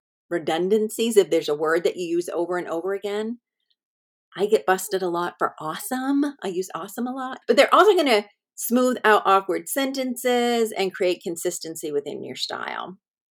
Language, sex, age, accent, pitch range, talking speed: English, female, 40-59, American, 180-250 Hz, 175 wpm